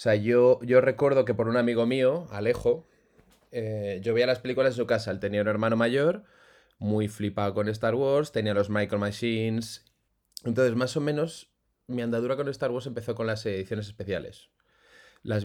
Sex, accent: male, Spanish